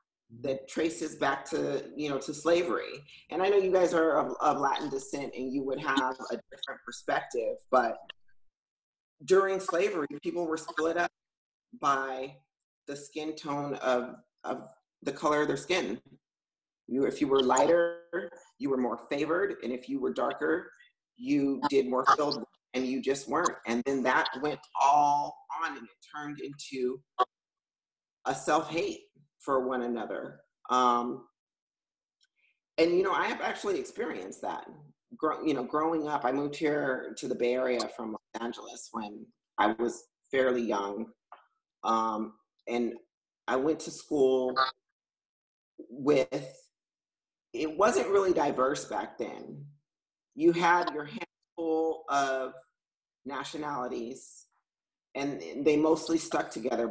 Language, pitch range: English, 130-165 Hz